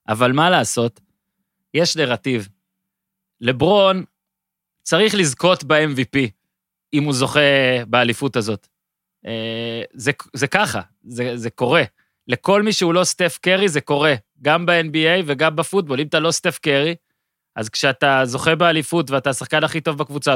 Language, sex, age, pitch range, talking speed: Hebrew, male, 30-49, 130-165 Hz, 135 wpm